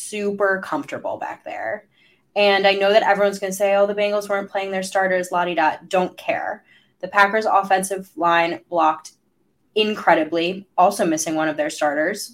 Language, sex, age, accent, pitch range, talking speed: English, female, 20-39, American, 160-200 Hz, 170 wpm